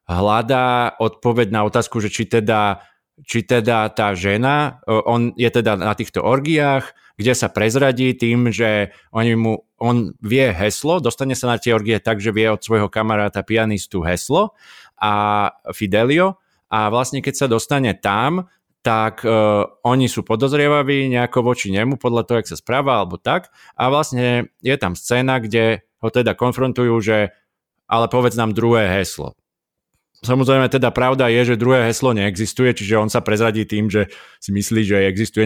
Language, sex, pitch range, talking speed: Slovak, male, 105-125 Hz, 160 wpm